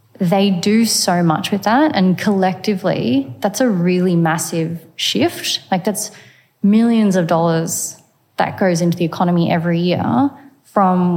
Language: English